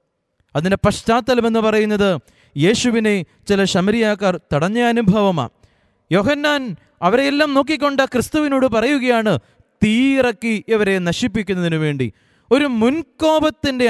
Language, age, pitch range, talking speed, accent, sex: Malayalam, 20-39, 195-255 Hz, 80 wpm, native, male